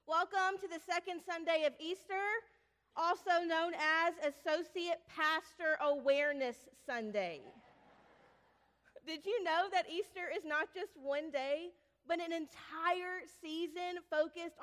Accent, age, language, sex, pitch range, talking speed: American, 30-49, English, female, 265-335 Hz, 120 wpm